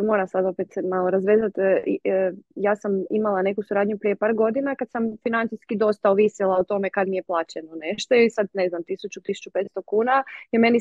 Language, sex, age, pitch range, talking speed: Croatian, female, 20-39, 190-230 Hz, 185 wpm